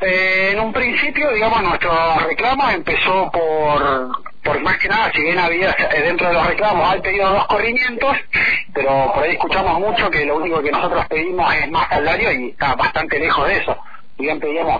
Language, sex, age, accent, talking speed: Spanish, male, 40-59, Argentinian, 190 wpm